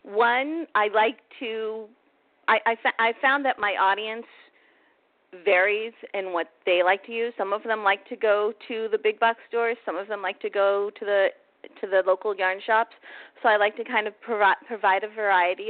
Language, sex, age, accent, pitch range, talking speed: English, female, 40-59, American, 190-245 Hz, 205 wpm